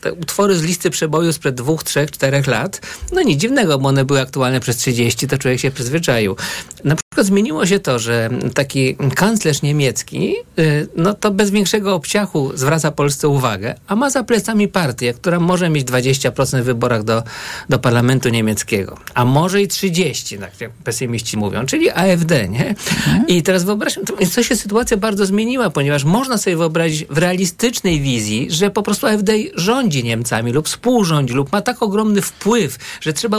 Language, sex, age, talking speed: Polish, male, 50-69, 175 wpm